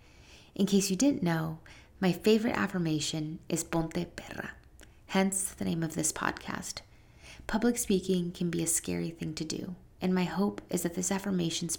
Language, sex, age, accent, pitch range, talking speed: English, female, 20-39, American, 155-185 Hz, 170 wpm